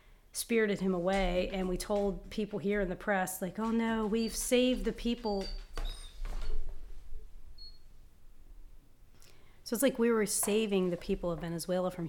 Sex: female